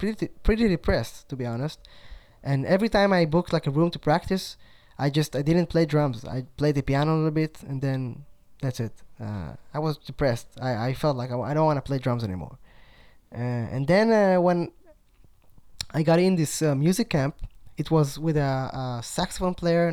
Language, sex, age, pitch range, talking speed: English, male, 20-39, 130-175 Hz, 205 wpm